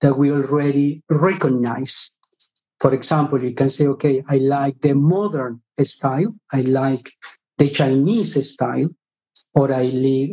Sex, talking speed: male, 130 wpm